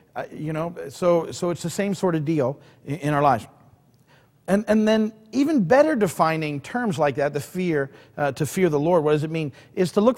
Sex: male